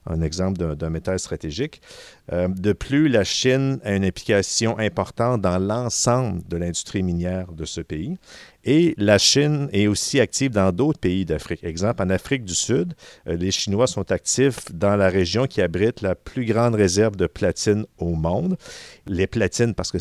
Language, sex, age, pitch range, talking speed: French, male, 50-69, 90-115 Hz, 175 wpm